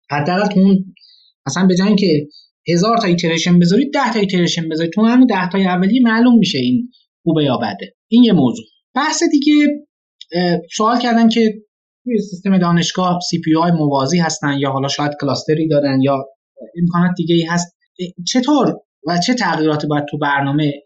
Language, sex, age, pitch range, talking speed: Persian, male, 30-49, 150-210 Hz, 150 wpm